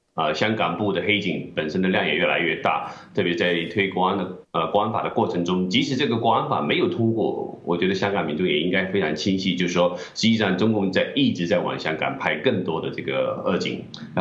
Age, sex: 30-49, male